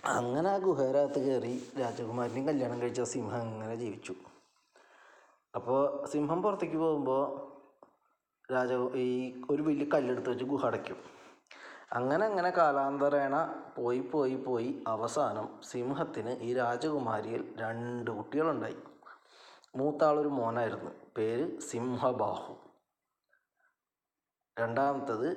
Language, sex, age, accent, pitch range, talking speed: Malayalam, male, 20-39, native, 120-145 Hz, 90 wpm